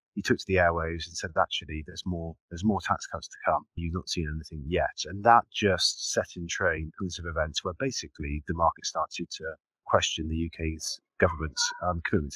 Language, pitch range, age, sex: English, 80-100 Hz, 30-49, male